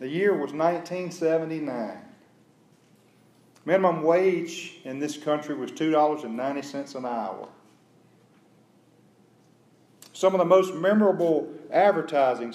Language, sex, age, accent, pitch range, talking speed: English, male, 40-59, American, 115-155 Hz, 90 wpm